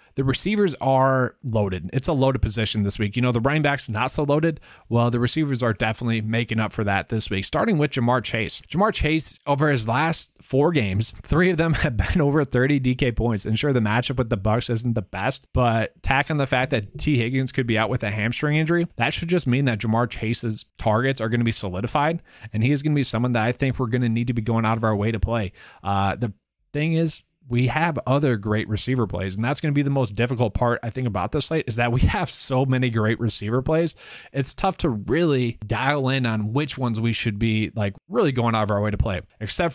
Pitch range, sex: 110-140 Hz, male